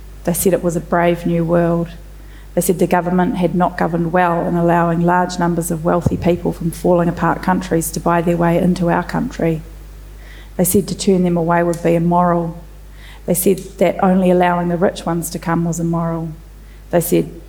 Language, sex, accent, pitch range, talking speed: English, female, Australian, 170-180 Hz, 195 wpm